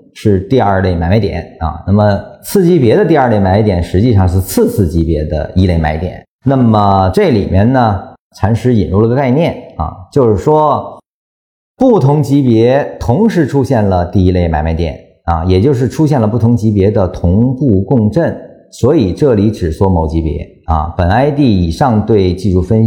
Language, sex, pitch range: Chinese, male, 90-120 Hz